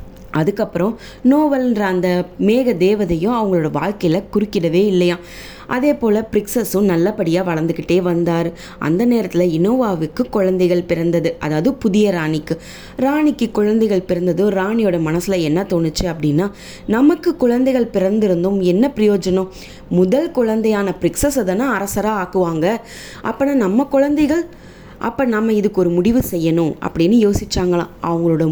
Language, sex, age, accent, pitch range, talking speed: English, female, 20-39, Indian, 170-225 Hz, 105 wpm